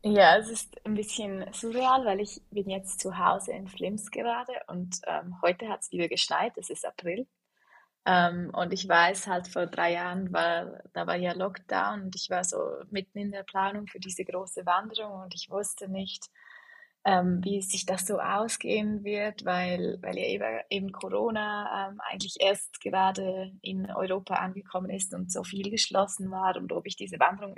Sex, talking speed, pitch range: female, 185 wpm, 180-205 Hz